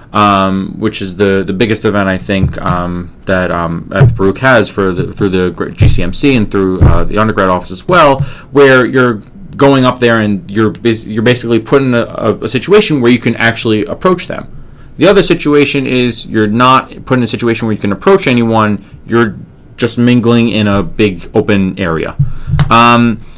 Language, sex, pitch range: English, male, 100-130 Hz